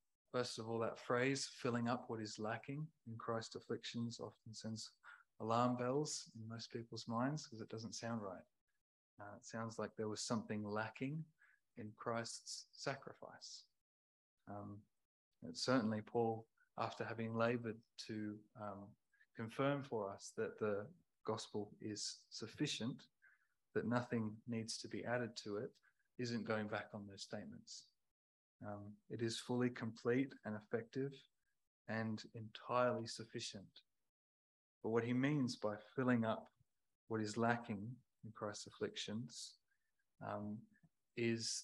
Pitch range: 105-120 Hz